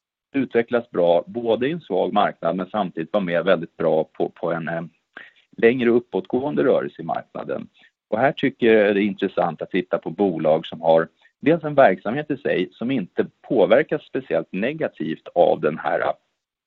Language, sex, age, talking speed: Swedish, male, 40-59, 170 wpm